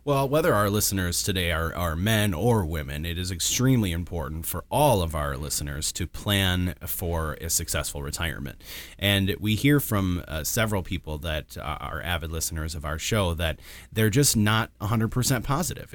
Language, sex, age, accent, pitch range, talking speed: English, male, 30-49, American, 80-105 Hz, 170 wpm